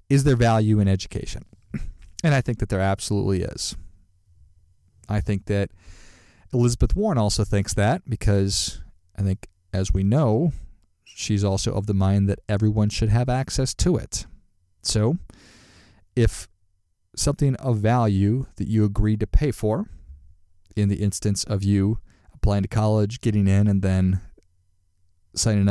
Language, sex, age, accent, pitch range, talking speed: English, male, 40-59, American, 95-115 Hz, 145 wpm